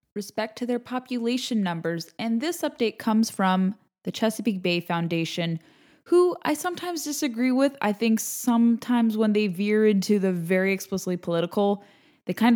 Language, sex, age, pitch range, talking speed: English, female, 10-29, 190-245 Hz, 155 wpm